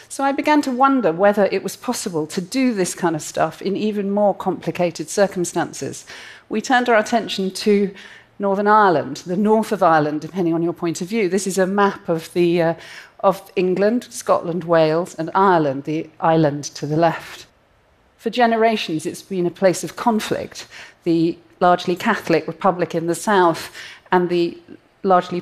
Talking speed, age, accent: 170 wpm, 40-59, British